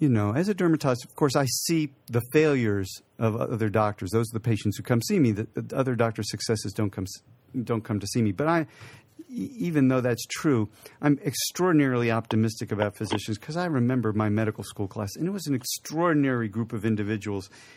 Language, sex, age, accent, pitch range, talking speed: English, male, 50-69, American, 110-140 Hz, 200 wpm